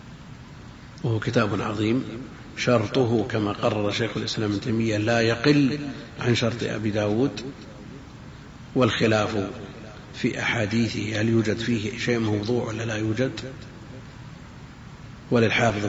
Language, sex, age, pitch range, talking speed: Arabic, male, 50-69, 110-125 Hz, 100 wpm